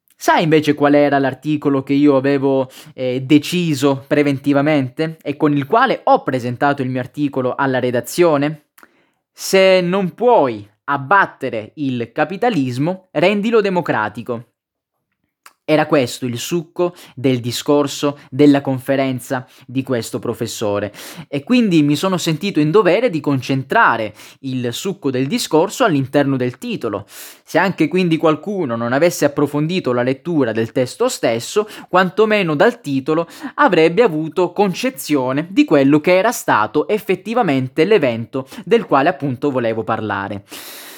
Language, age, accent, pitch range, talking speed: Italian, 20-39, native, 130-190 Hz, 125 wpm